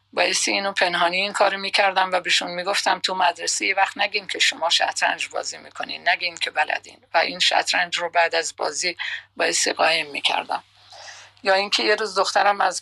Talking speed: 185 wpm